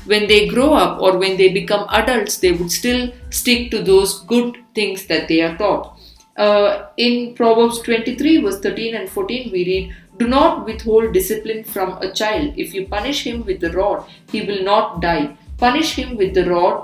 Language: English